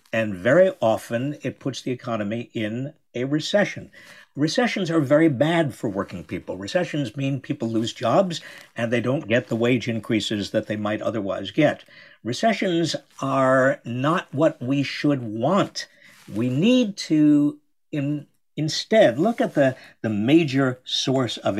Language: English